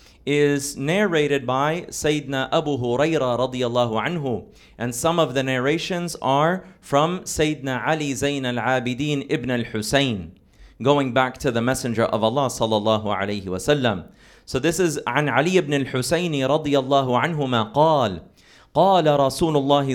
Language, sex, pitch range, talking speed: English, male, 115-150 Hz, 135 wpm